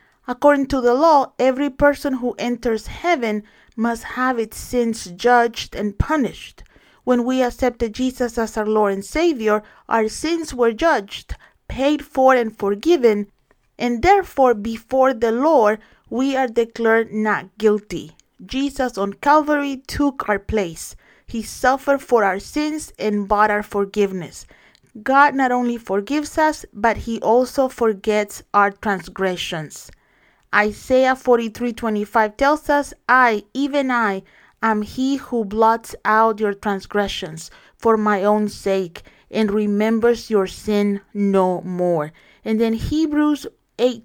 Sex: female